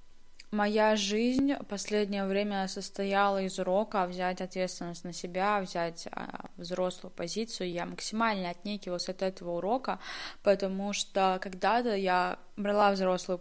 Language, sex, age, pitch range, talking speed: Russian, female, 20-39, 185-210 Hz, 120 wpm